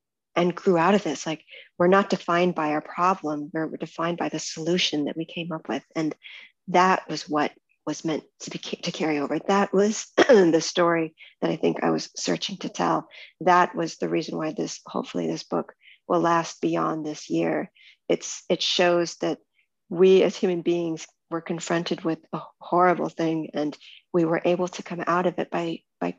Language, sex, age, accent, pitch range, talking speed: English, female, 40-59, American, 160-185 Hz, 195 wpm